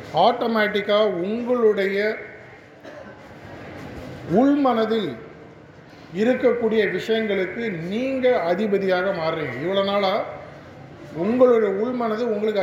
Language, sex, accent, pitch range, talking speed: Tamil, male, native, 180-220 Hz, 60 wpm